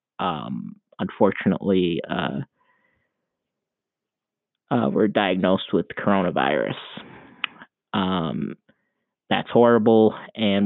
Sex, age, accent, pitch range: male, 20-39, American, 95-115 Hz